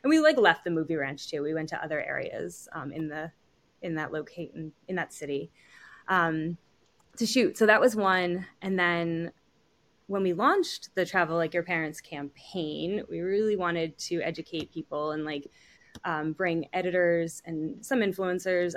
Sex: female